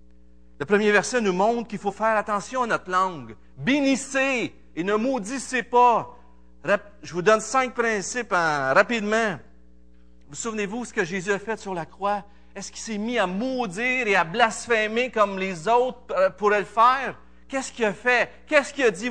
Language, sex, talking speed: French, male, 190 wpm